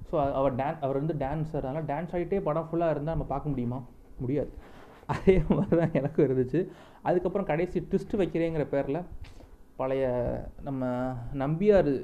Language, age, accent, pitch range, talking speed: Tamil, 30-49, native, 125-155 Hz, 150 wpm